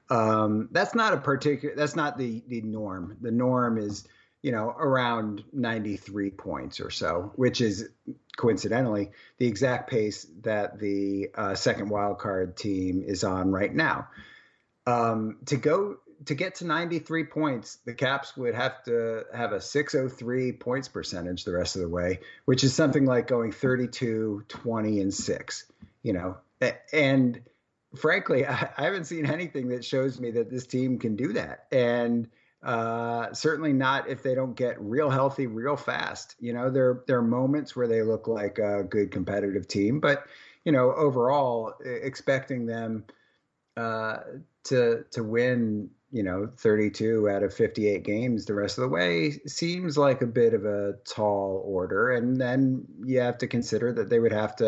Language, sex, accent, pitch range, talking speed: English, male, American, 105-130 Hz, 170 wpm